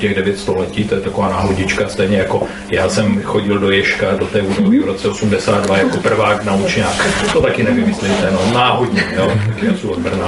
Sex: male